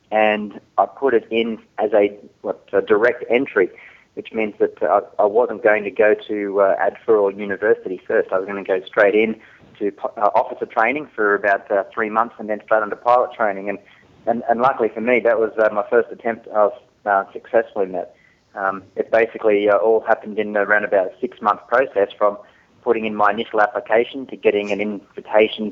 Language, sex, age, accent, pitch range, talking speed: English, male, 30-49, Australian, 105-115 Hz, 200 wpm